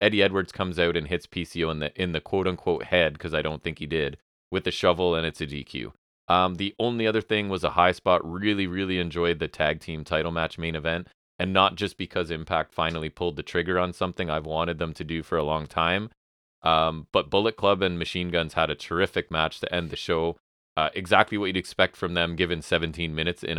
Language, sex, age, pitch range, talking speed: English, male, 30-49, 80-90 Hz, 230 wpm